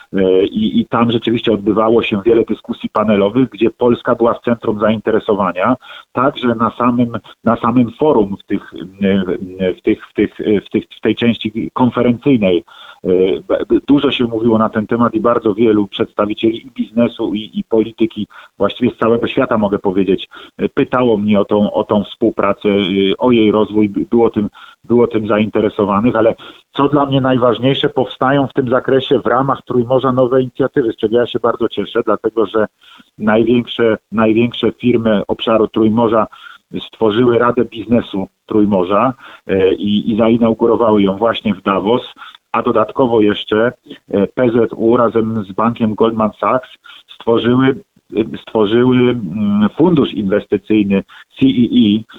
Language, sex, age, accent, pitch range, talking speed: Polish, male, 40-59, native, 110-125 Hz, 130 wpm